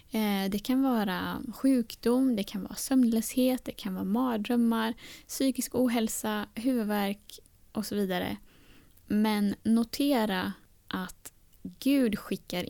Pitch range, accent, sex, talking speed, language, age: 195-235 Hz, native, female, 110 wpm, Swedish, 20-39